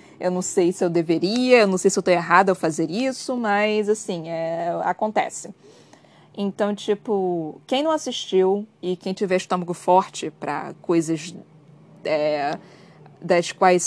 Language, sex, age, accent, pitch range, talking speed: Portuguese, female, 20-39, Brazilian, 175-215 Hz, 150 wpm